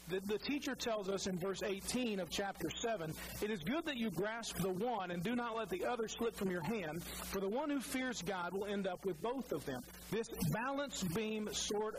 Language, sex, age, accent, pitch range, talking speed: English, male, 40-59, American, 130-220 Hz, 225 wpm